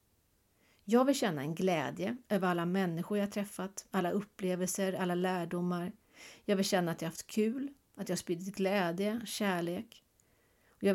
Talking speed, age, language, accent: 175 wpm, 40-59, English, Swedish